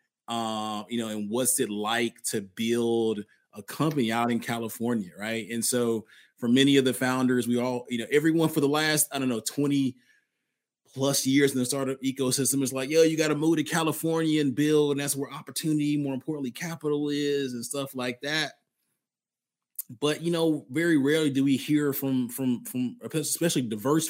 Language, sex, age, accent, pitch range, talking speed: English, male, 20-39, American, 115-140 Hz, 190 wpm